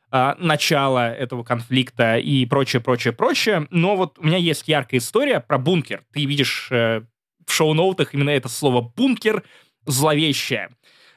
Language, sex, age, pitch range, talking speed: Russian, male, 20-39, 130-160 Hz, 135 wpm